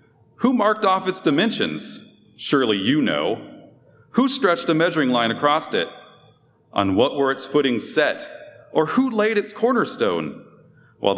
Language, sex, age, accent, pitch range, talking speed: English, male, 40-59, American, 120-190 Hz, 145 wpm